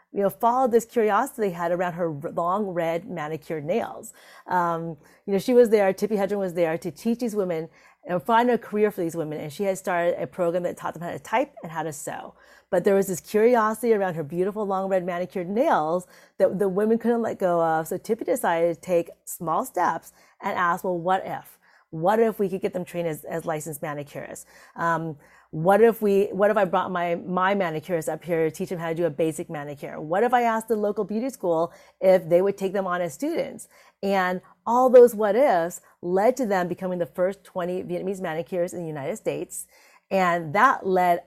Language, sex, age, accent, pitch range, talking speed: English, female, 30-49, American, 170-205 Hz, 220 wpm